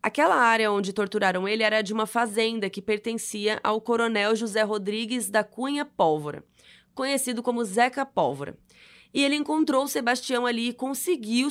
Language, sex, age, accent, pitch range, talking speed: Portuguese, female, 20-39, Brazilian, 200-250 Hz, 155 wpm